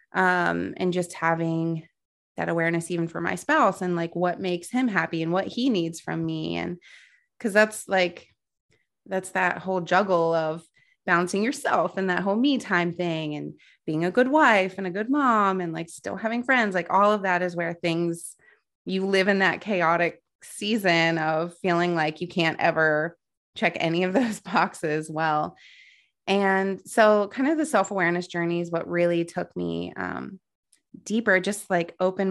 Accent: American